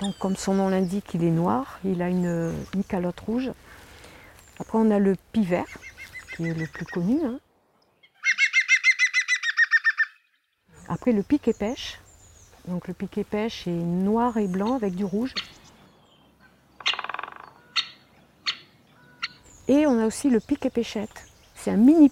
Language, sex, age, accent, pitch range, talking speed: French, female, 50-69, French, 180-225 Hz, 145 wpm